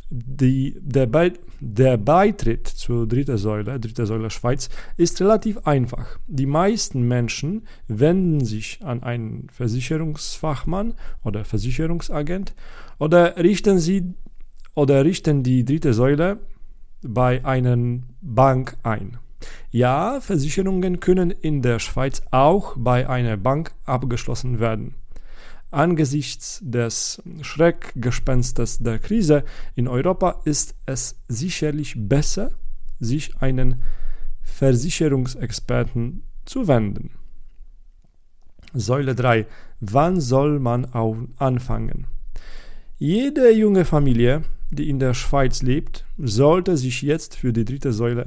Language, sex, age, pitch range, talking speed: German, male, 40-59, 120-155 Hz, 105 wpm